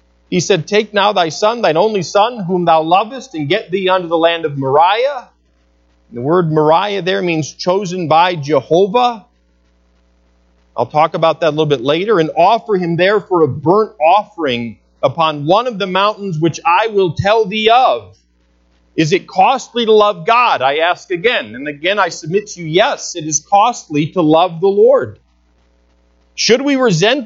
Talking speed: 180 wpm